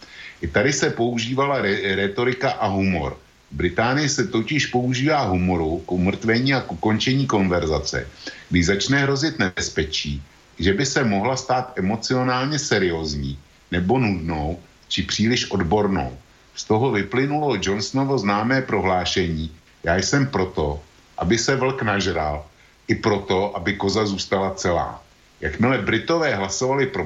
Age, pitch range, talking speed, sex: 50-69, 95-130 Hz, 130 wpm, male